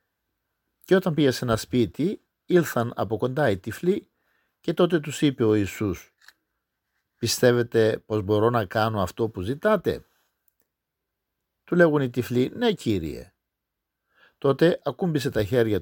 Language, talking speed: Greek, 135 wpm